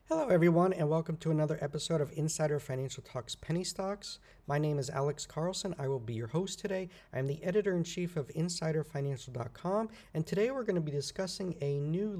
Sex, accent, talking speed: male, American, 195 wpm